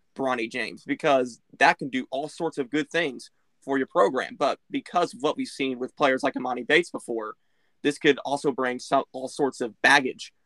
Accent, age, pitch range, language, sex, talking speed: American, 20-39, 125-150 Hz, English, male, 200 wpm